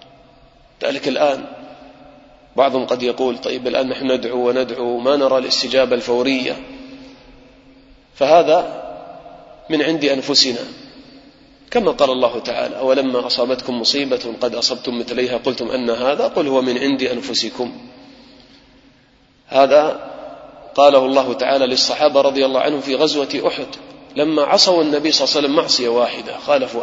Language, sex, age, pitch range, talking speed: English, male, 30-49, 125-150 Hz, 125 wpm